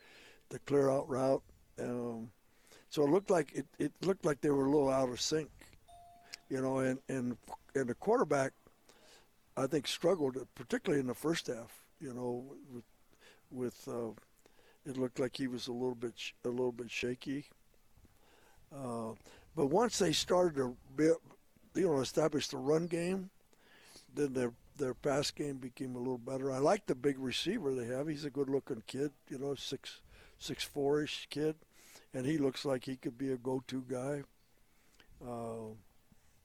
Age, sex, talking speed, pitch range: 60-79, male, 170 wpm, 125-145 Hz